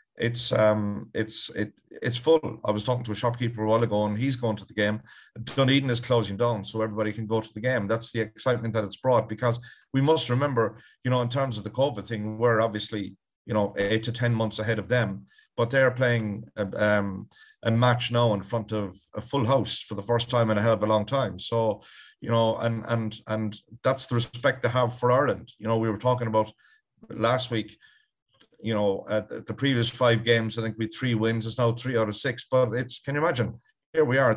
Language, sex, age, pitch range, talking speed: English, male, 30-49, 110-125 Hz, 235 wpm